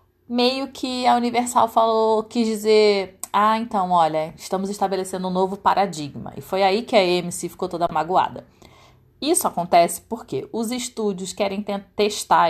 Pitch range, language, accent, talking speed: 165-220 Hz, Portuguese, Brazilian, 150 wpm